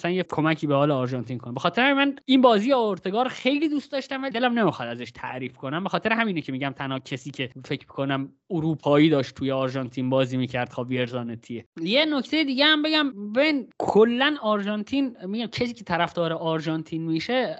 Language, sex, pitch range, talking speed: Persian, male, 145-230 Hz, 185 wpm